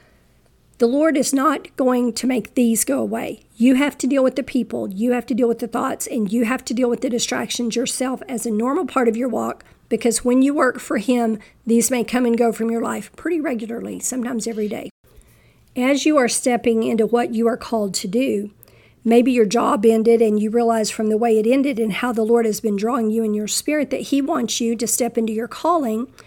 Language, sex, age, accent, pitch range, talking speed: English, female, 50-69, American, 225-255 Hz, 235 wpm